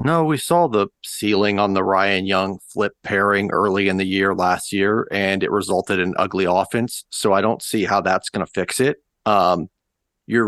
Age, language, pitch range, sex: 40-59, English, 95-110 Hz, male